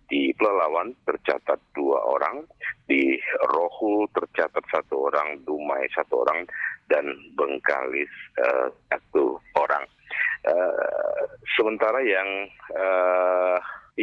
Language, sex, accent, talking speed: Indonesian, male, native, 95 wpm